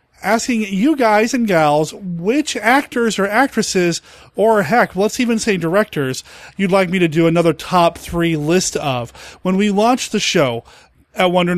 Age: 30-49